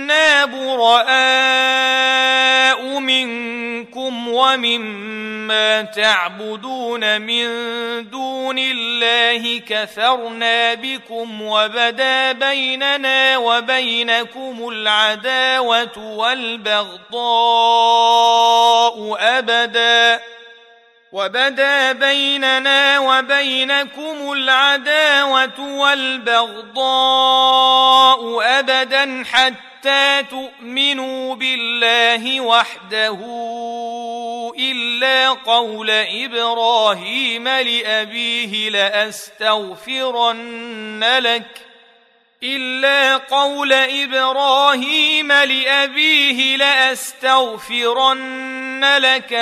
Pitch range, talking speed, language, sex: 230-265 Hz, 45 wpm, Arabic, male